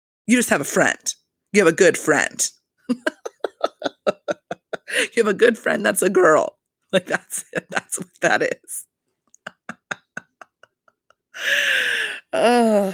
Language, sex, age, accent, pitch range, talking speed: English, female, 30-49, American, 155-245 Hz, 120 wpm